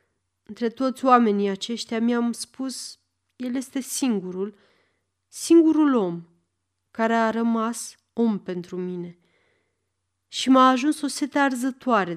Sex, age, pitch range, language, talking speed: female, 30-49, 165-245 Hz, Romanian, 115 wpm